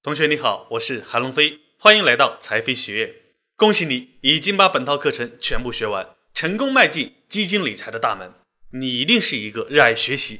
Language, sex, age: Chinese, male, 20-39